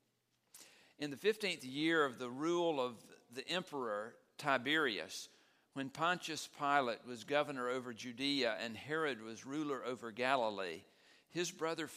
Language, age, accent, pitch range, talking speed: English, 50-69, American, 130-170 Hz, 130 wpm